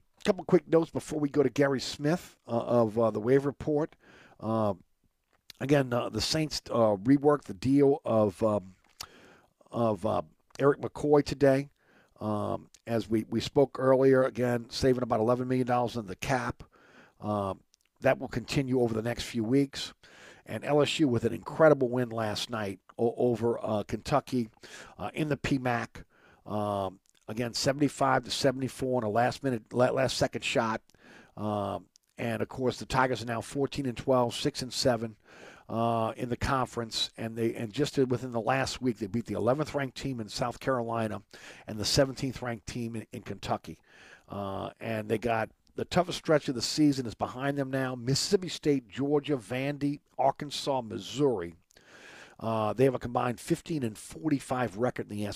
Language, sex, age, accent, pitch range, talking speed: English, male, 50-69, American, 110-140 Hz, 170 wpm